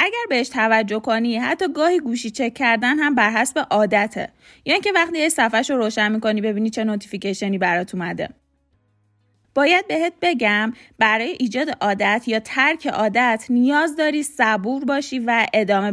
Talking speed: 155 wpm